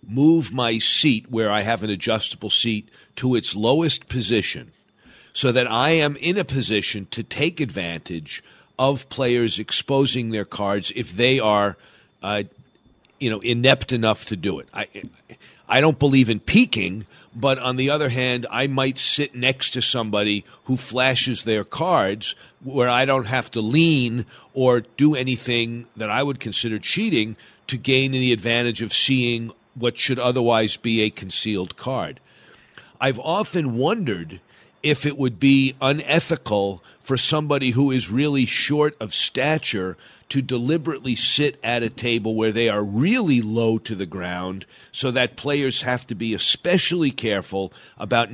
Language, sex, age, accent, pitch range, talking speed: English, male, 50-69, American, 110-135 Hz, 160 wpm